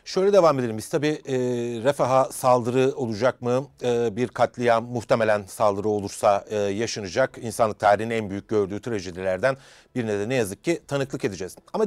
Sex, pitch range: male, 130-175 Hz